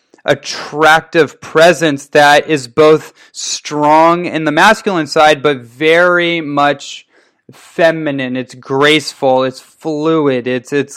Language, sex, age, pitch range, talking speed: English, male, 20-39, 140-165 Hz, 110 wpm